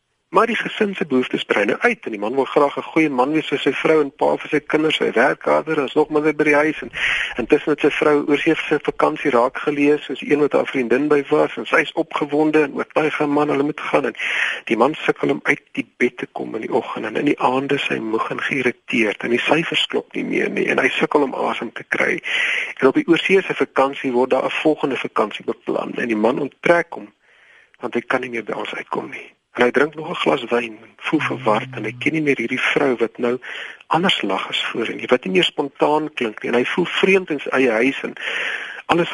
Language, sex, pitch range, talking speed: Dutch, male, 125-155 Hz, 245 wpm